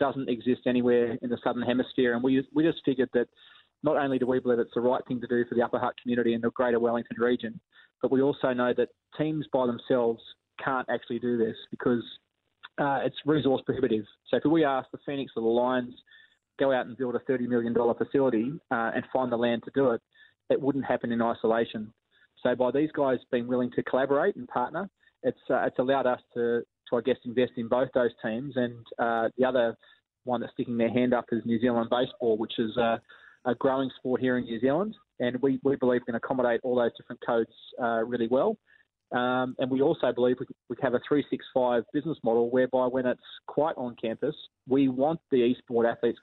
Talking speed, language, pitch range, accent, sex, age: 215 wpm, English, 120-130 Hz, Australian, male, 20-39